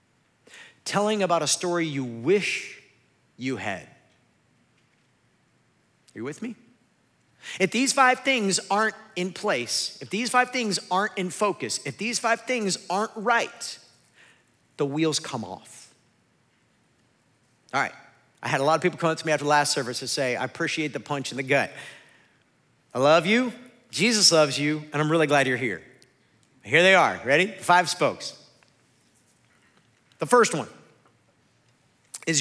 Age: 40-59